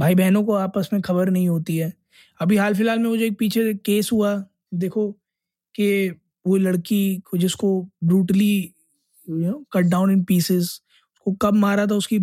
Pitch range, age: 180-220 Hz, 20-39